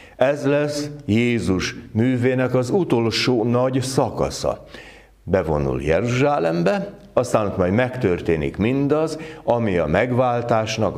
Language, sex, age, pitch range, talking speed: Hungarian, male, 60-79, 105-140 Hz, 95 wpm